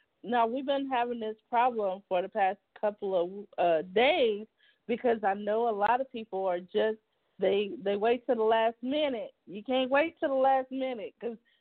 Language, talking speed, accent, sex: English, 190 wpm, American, female